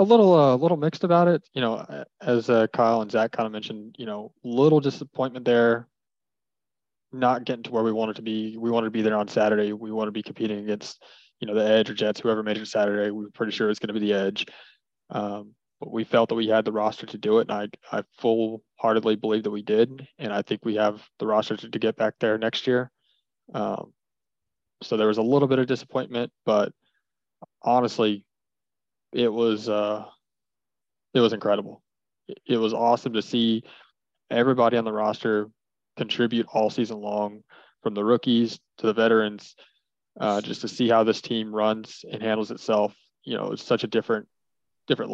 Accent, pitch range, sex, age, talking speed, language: American, 110-120 Hz, male, 20-39, 205 wpm, English